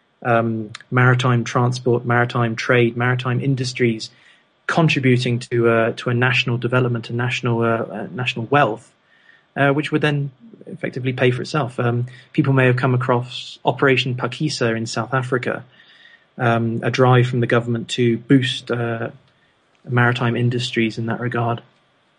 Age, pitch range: 30-49, 120-135 Hz